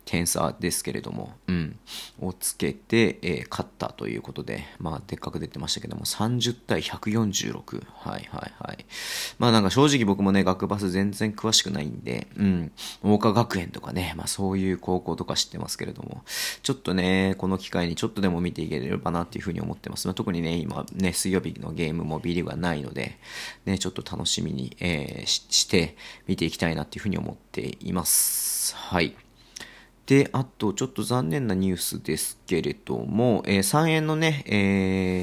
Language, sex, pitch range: Japanese, male, 90-115 Hz